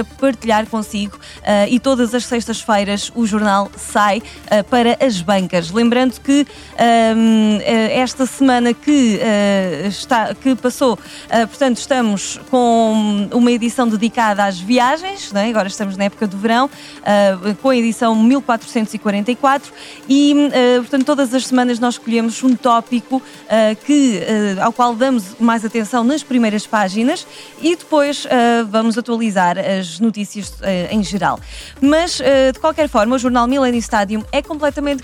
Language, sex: Portuguese, female